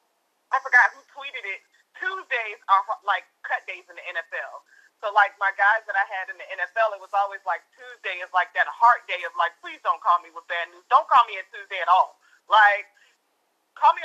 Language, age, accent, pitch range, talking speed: English, 30-49, American, 185-240 Hz, 220 wpm